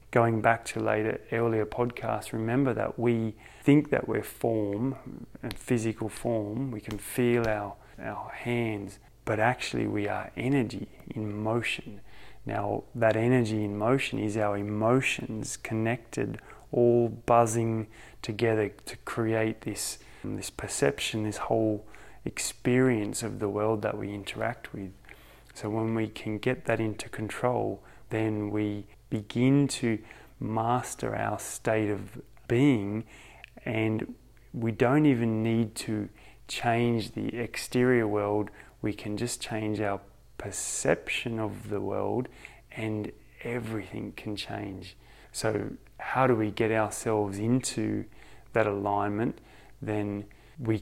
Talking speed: 125 wpm